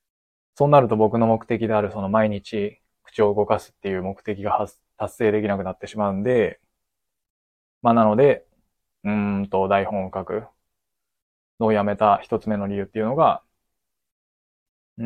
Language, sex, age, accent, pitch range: Japanese, male, 20-39, native, 100-110 Hz